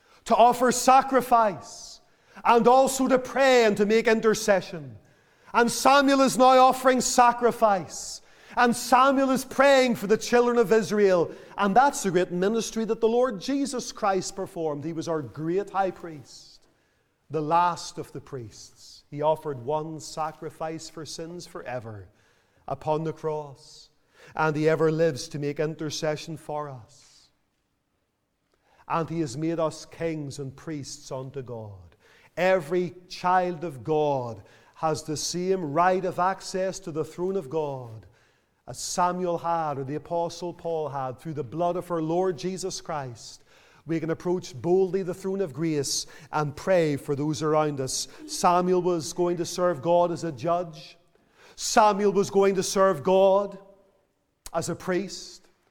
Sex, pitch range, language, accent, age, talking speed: male, 150-195 Hz, English, Irish, 40-59, 150 wpm